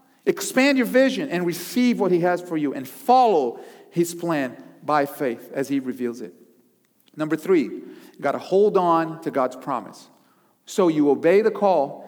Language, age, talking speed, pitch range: English, 40-59, 170 wpm, 160-225 Hz